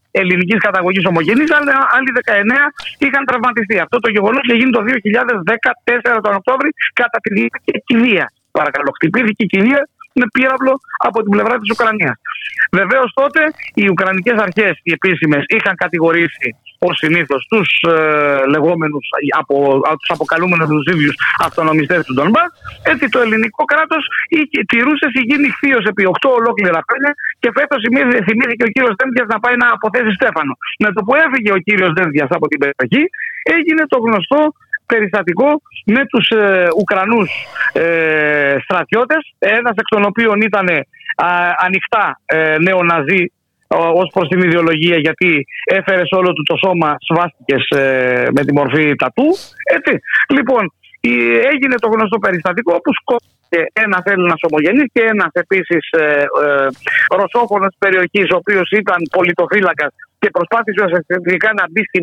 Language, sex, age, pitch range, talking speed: Greek, male, 30-49, 170-245 Hz, 150 wpm